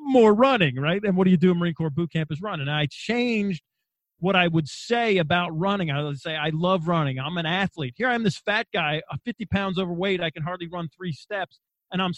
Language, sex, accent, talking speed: English, male, American, 240 wpm